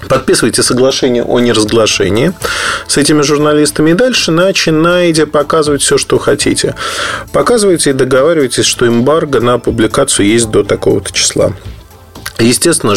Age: 20-39